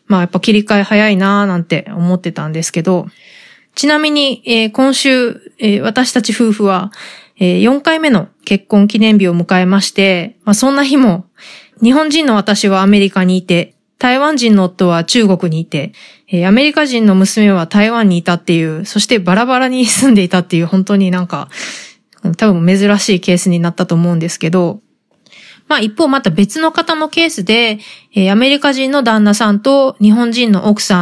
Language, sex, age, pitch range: Japanese, female, 20-39, 185-245 Hz